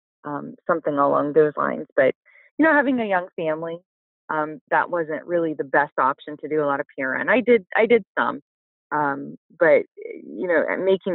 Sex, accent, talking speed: female, American, 185 wpm